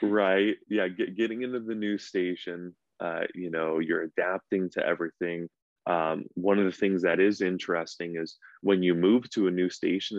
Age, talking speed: 20-39, 175 wpm